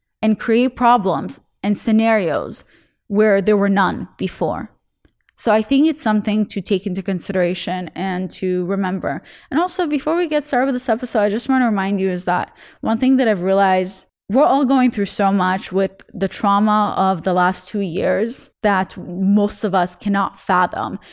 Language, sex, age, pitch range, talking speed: English, female, 20-39, 195-240 Hz, 180 wpm